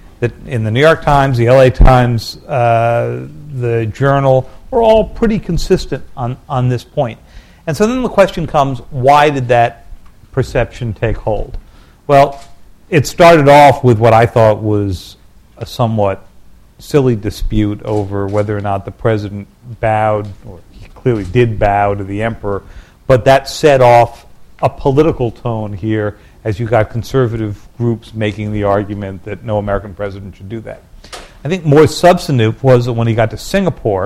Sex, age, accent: male, 50-69, American